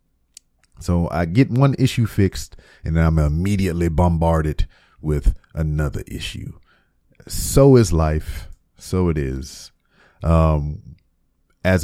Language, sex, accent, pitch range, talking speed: English, male, American, 80-105 Hz, 105 wpm